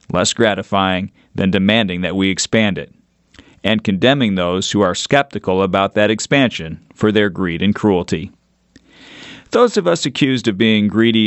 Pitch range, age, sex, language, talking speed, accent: 95-120 Hz, 40-59, male, English, 155 wpm, American